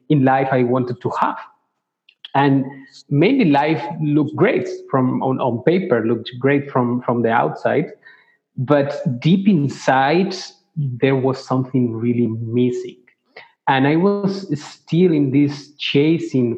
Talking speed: 130 wpm